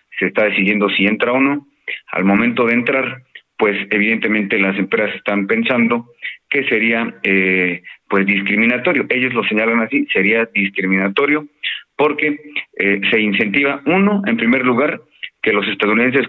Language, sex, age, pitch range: Spanish, male, 40-59, 105-135 Hz